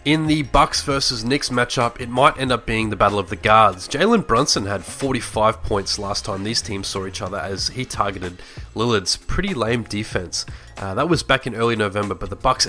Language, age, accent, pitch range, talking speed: English, 20-39, Australian, 100-130 Hz, 215 wpm